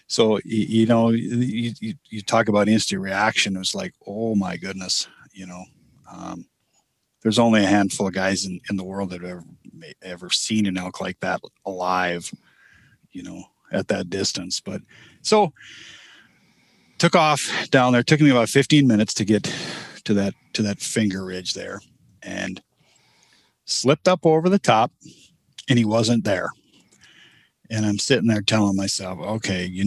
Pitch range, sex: 100-120 Hz, male